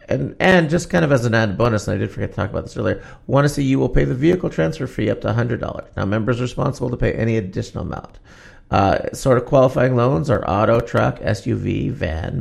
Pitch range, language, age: 100-130 Hz, English, 40-59